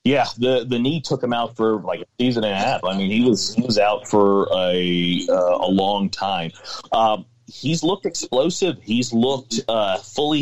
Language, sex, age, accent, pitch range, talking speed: English, male, 30-49, American, 95-115 Hz, 205 wpm